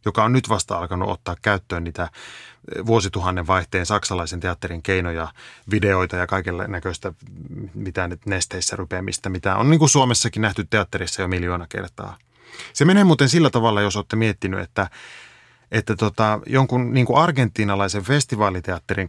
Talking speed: 140 wpm